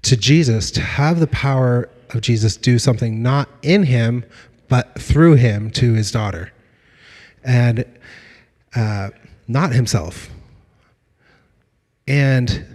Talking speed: 115 wpm